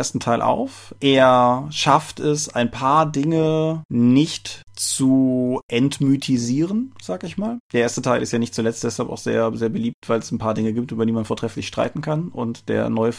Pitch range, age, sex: 110-135 Hz, 30-49, male